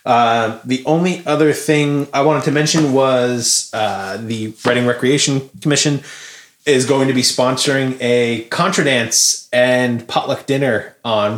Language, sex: English, male